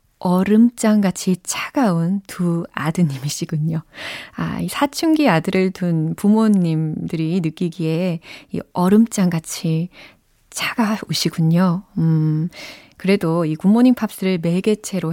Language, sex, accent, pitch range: Korean, female, native, 165-220 Hz